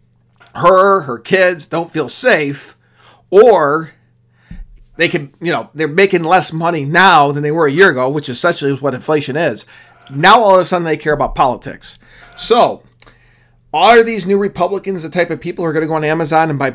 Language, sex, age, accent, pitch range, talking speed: English, male, 40-59, American, 135-165 Hz, 195 wpm